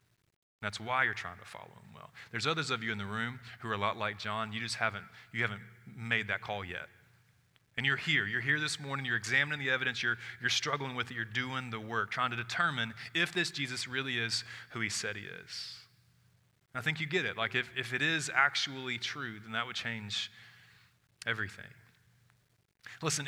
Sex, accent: male, American